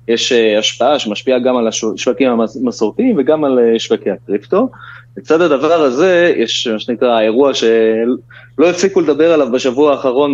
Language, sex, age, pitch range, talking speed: Hebrew, male, 20-39, 115-140 Hz, 155 wpm